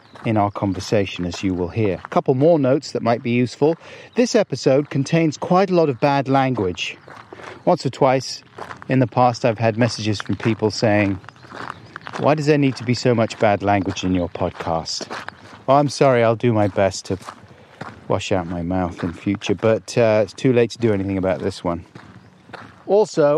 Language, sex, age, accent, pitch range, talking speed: English, male, 40-59, British, 105-135 Hz, 190 wpm